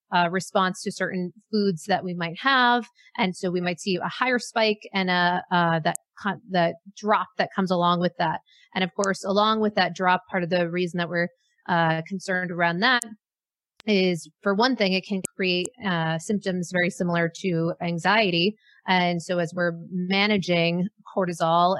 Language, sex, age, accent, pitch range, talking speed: English, female, 30-49, American, 175-210 Hz, 175 wpm